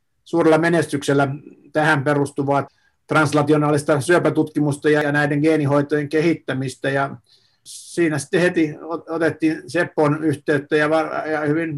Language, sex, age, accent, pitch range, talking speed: Finnish, male, 50-69, native, 140-160 Hz, 105 wpm